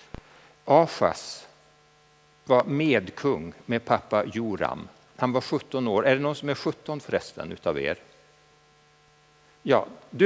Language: Swedish